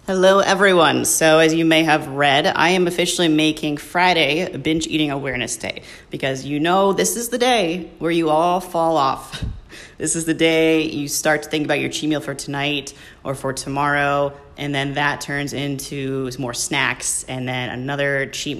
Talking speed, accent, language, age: 185 wpm, American, English, 30-49